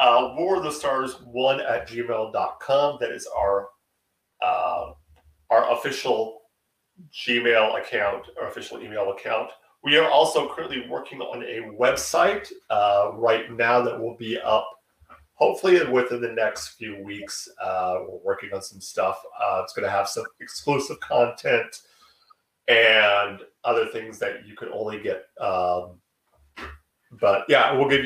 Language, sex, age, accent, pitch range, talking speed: English, male, 40-59, American, 100-140 Hz, 140 wpm